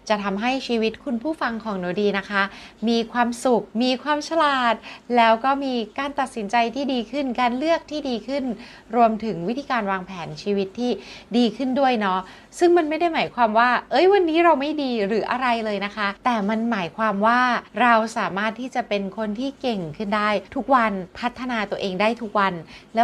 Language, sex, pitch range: Thai, female, 205-275 Hz